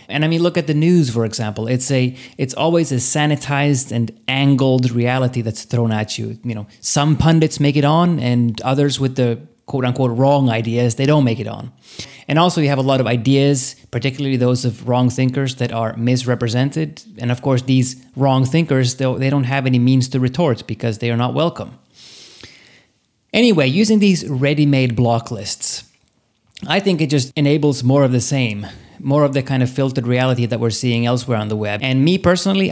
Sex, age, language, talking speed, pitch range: male, 30-49, English, 195 wpm, 120-140 Hz